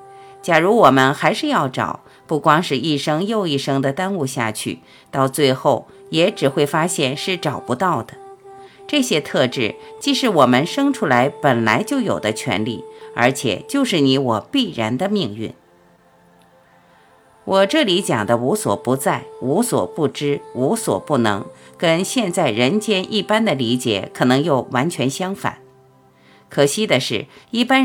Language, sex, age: Chinese, female, 50-69